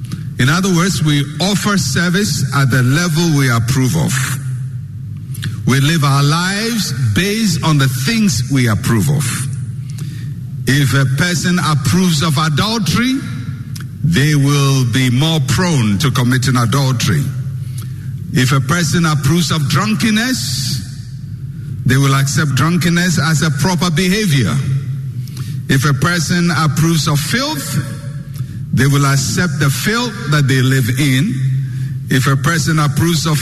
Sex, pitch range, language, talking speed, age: male, 130-160 Hz, English, 125 wpm, 60-79